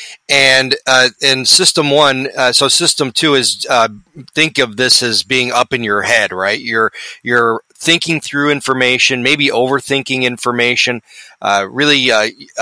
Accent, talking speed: American, 150 wpm